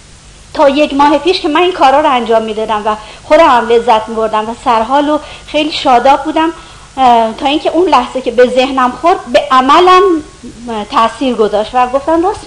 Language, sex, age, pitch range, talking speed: Persian, female, 50-69, 235-315 Hz, 170 wpm